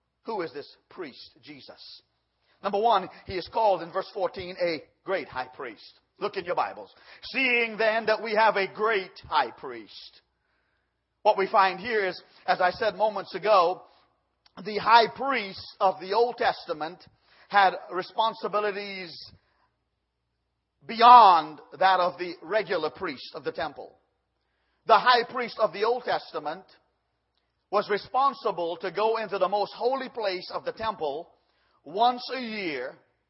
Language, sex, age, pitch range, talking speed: English, male, 40-59, 185-245 Hz, 145 wpm